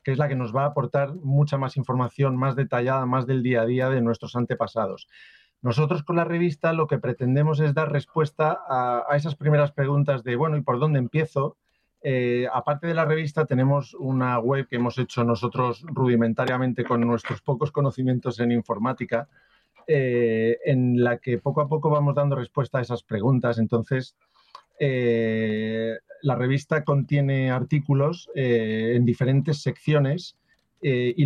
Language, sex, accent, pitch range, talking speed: Spanish, male, Spanish, 120-145 Hz, 165 wpm